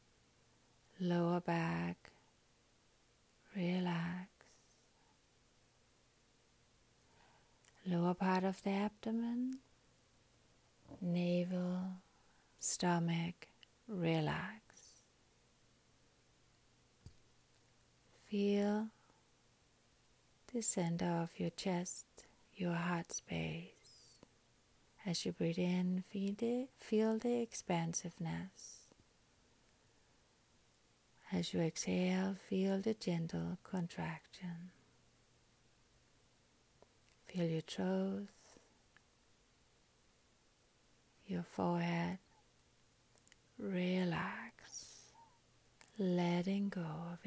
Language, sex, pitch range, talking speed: English, female, 170-195 Hz, 55 wpm